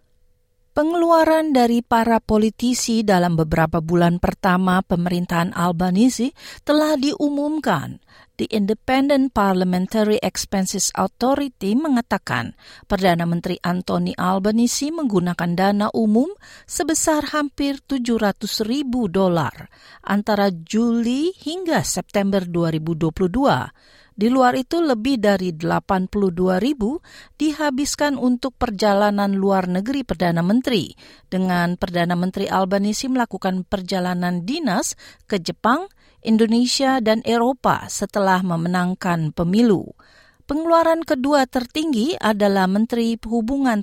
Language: Indonesian